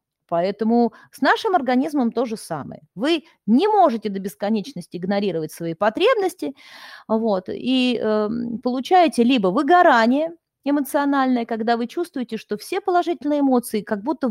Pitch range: 205-270 Hz